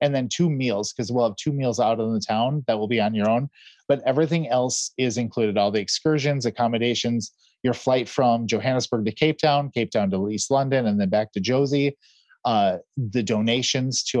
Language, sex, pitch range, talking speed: English, male, 110-135 Hz, 205 wpm